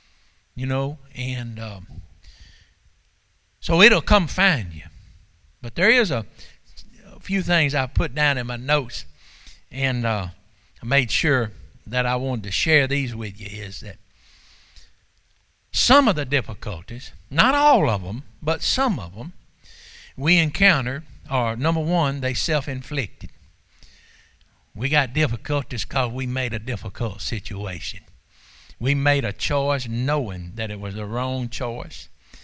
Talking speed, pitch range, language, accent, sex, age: 140 wpm, 105-150 Hz, English, American, male, 60-79